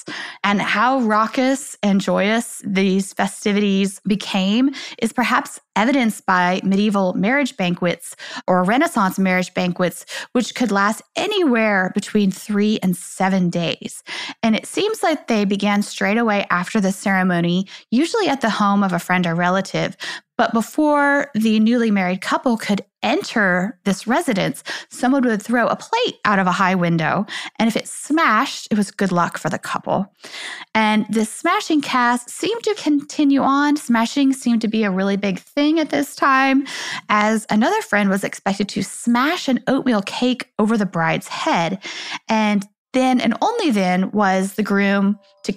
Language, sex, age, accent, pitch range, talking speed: English, female, 20-39, American, 195-255 Hz, 160 wpm